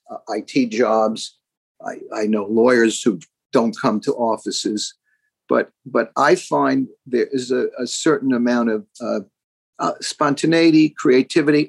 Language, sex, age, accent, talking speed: English, male, 50-69, American, 140 wpm